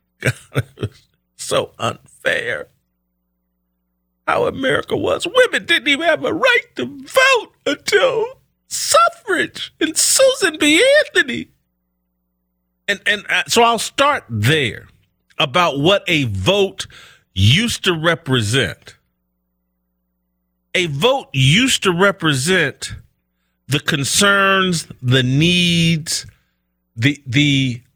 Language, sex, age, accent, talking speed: English, male, 40-59, American, 100 wpm